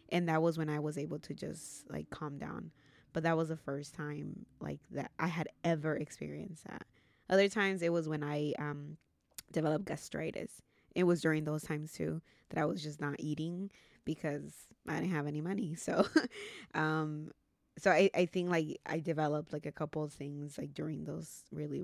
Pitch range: 145-165 Hz